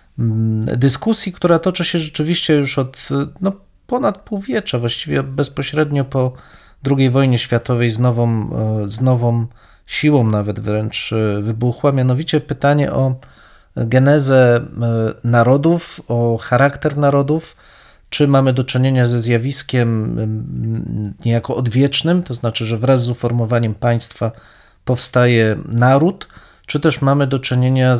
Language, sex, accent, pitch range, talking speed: Polish, male, native, 115-140 Hz, 120 wpm